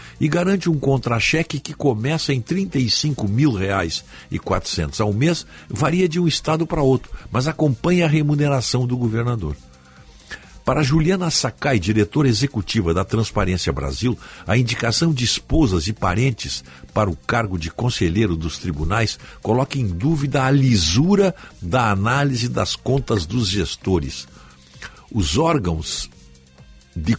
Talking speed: 135 wpm